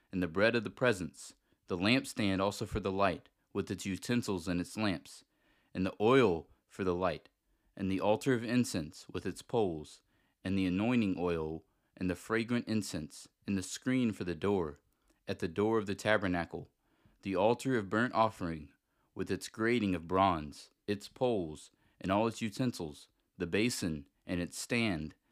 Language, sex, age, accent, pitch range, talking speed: English, male, 30-49, American, 90-115 Hz, 175 wpm